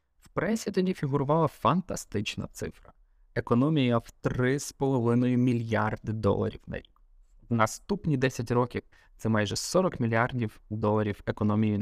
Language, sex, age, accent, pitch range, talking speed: Ukrainian, male, 20-39, native, 110-145 Hz, 110 wpm